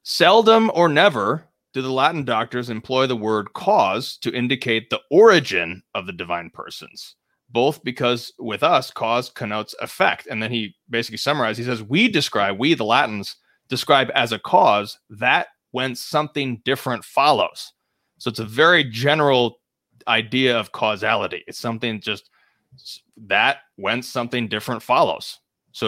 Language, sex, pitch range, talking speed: English, male, 110-135 Hz, 150 wpm